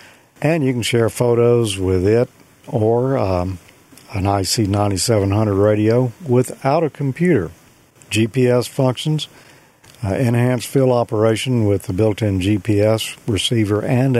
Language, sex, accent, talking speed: English, male, American, 115 wpm